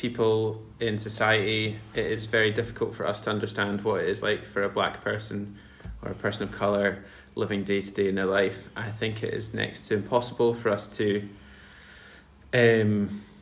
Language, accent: English, British